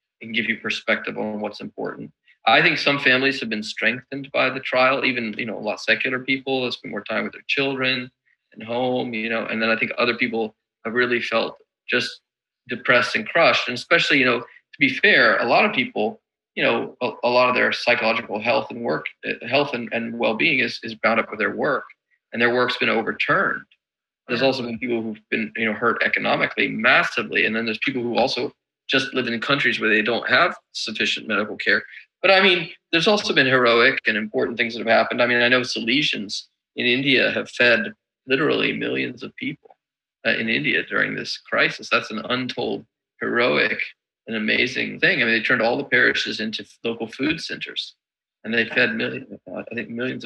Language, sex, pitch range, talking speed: English, male, 115-130 Hz, 205 wpm